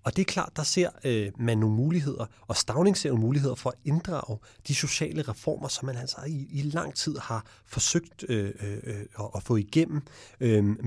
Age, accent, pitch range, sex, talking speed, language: 30-49, Danish, 110-140 Hz, male, 200 wpm, English